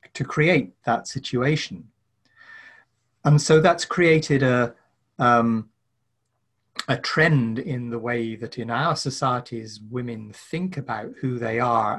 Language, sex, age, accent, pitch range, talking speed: English, male, 30-49, British, 115-135 Hz, 125 wpm